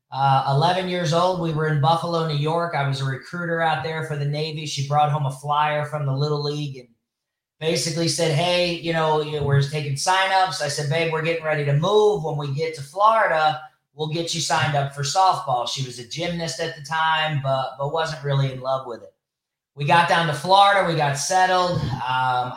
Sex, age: male, 20-39